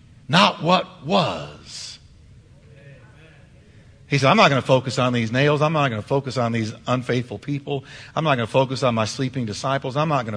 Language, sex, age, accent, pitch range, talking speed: English, male, 50-69, American, 115-155 Hz, 195 wpm